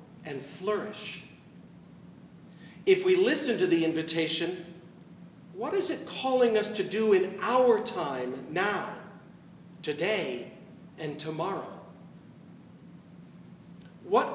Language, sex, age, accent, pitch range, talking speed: English, male, 50-69, American, 175-230 Hz, 95 wpm